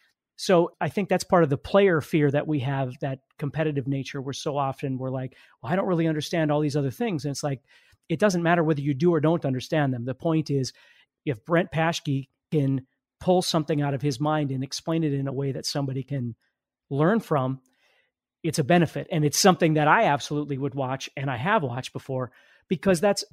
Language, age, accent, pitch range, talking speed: English, 40-59, American, 140-170 Hz, 215 wpm